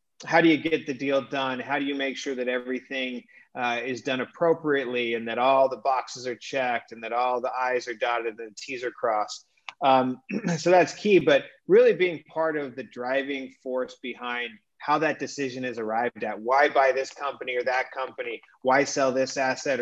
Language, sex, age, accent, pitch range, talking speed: English, male, 30-49, American, 125-140 Hz, 205 wpm